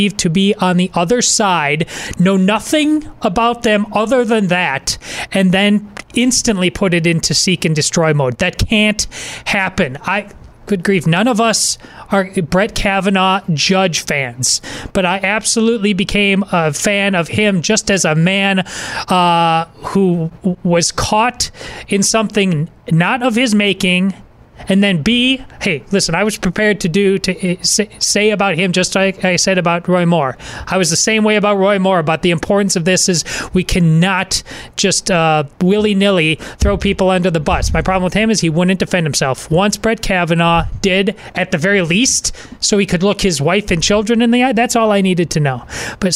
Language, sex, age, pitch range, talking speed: English, male, 30-49, 175-205 Hz, 180 wpm